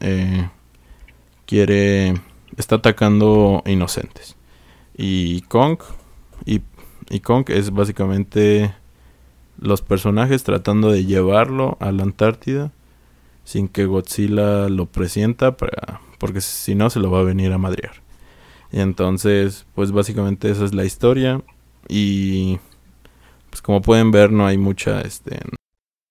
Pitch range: 70-105 Hz